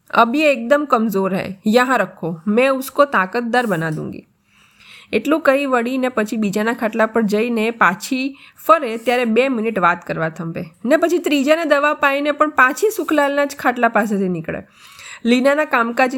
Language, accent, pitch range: Gujarati, native, 205-270 Hz